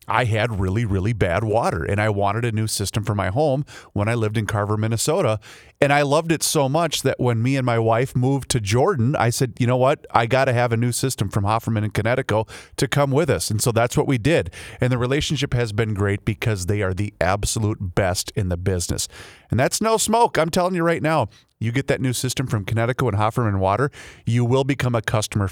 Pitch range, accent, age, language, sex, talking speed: 105-135 Hz, American, 30-49, English, male, 240 wpm